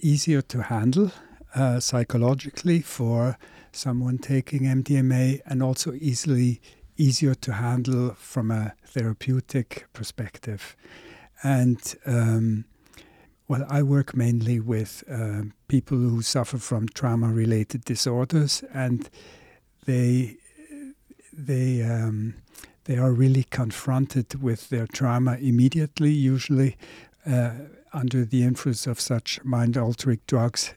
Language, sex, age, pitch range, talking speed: French, male, 60-79, 115-135 Hz, 105 wpm